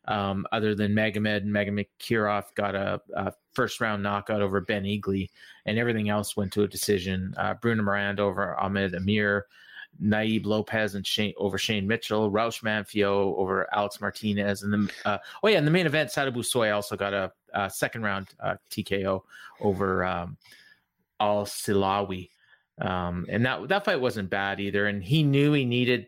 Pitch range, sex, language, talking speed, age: 100-120 Hz, male, English, 175 wpm, 30-49